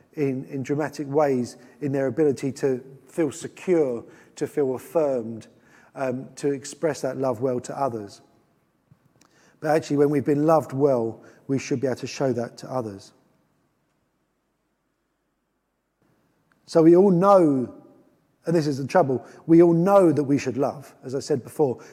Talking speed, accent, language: 160 wpm, British, English